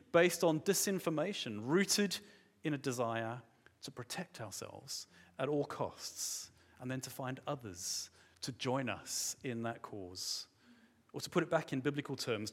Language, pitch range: English, 115-155 Hz